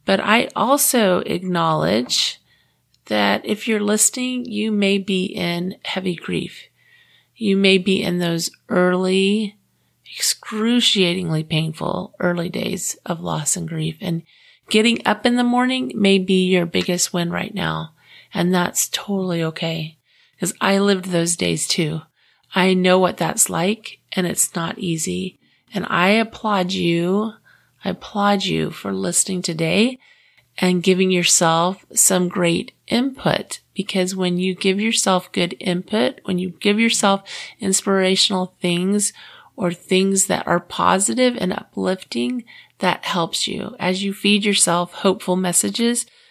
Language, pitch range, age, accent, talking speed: English, 175-210 Hz, 30-49, American, 135 wpm